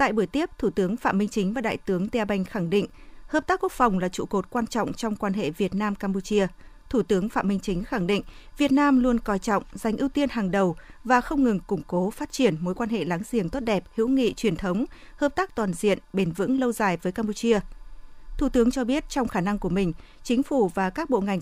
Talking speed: 245 wpm